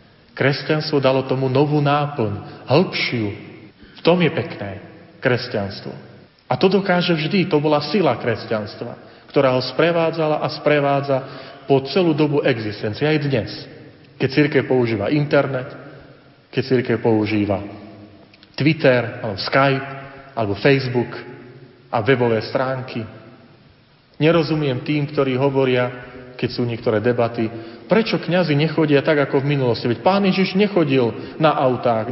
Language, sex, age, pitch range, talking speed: Slovak, male, 40-59, 115-150 Hz, 125 wpm